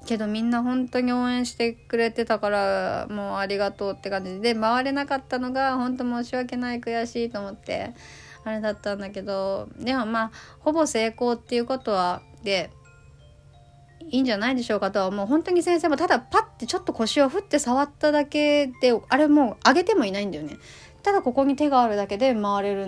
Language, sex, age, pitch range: Japanese, female, 20-39, 195-255 Hz